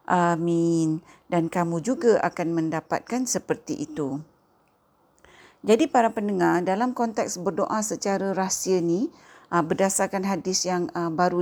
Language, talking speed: Malay, 110 wpm